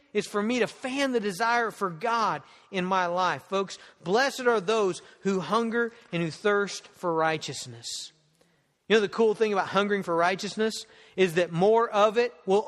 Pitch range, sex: 190-245 Hz, male